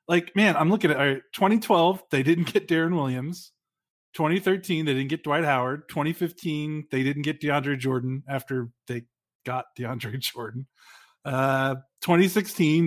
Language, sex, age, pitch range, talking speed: English, male, 30-49, 130-170 Hz, 150 wpm